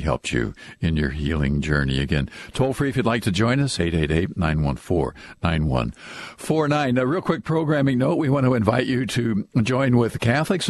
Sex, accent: male, American